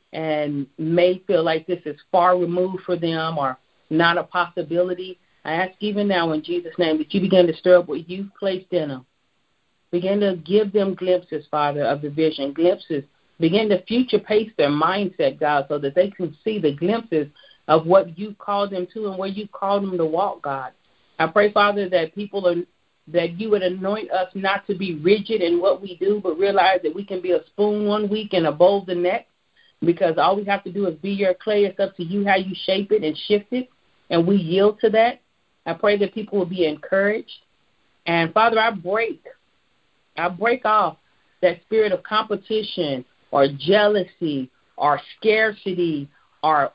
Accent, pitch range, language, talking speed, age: American, 165-200 Hz, English, 195 wpm, 40-59